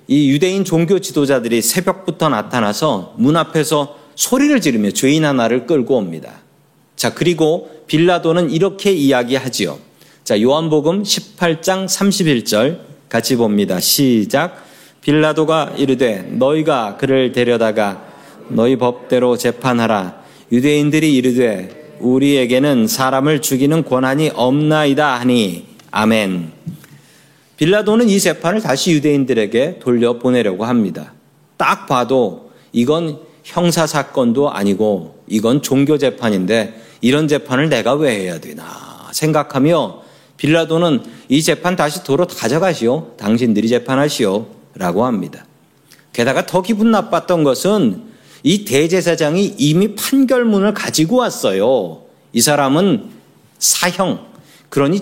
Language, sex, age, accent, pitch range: Korean, male, 40-59, native, 125-175 Hz